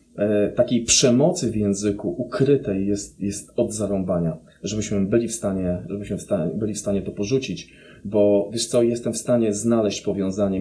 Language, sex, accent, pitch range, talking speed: Polish, male, native, 95-110 Hz, 160 wpm